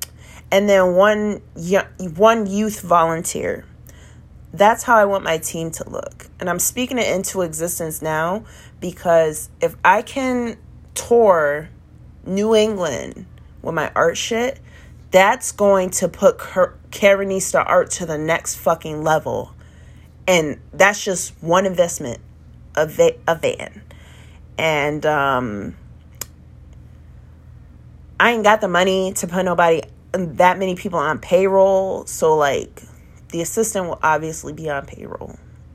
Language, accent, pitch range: English, American, 155-200 Hz